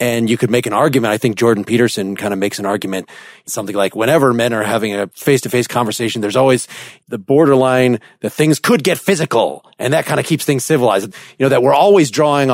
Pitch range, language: 120-145 Hz, English